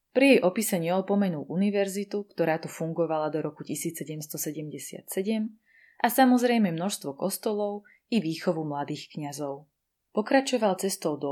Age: 20-39